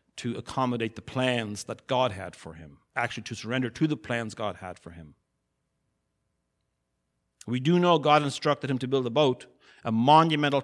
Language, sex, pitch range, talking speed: English, male, 115-145 Hz, 175 wpm